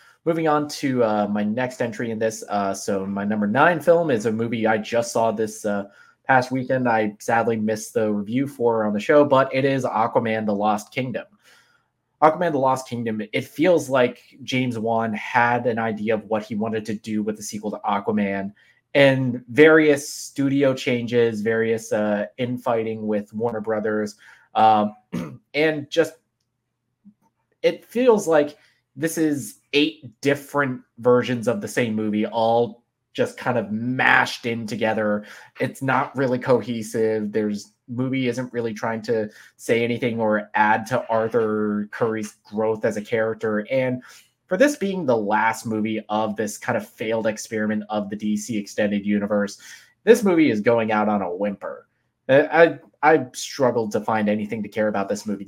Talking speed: 170 wpm